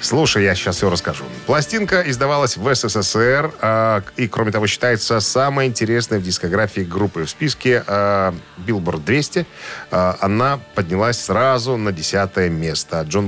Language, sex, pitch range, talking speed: Russian, male, 95-130 Hz, 145 wpm